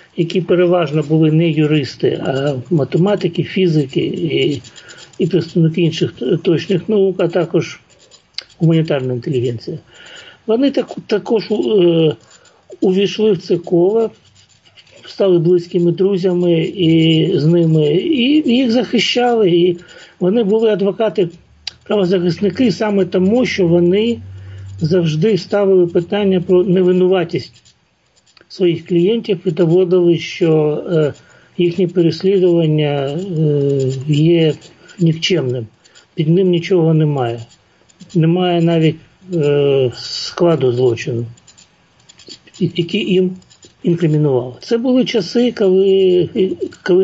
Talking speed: 90 wpm